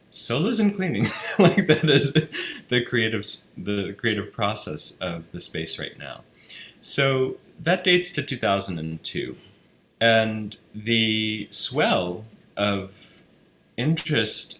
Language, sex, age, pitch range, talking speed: English, male, 20-39, 85-110 Hz, 105 wpm